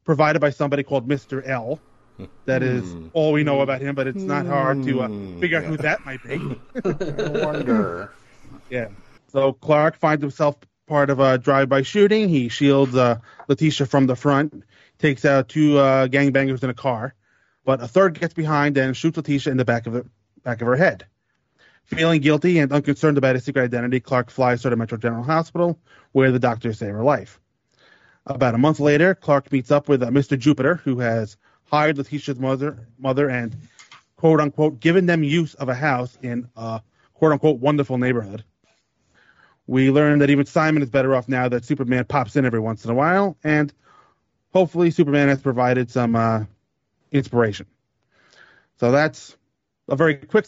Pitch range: 125-150 Hz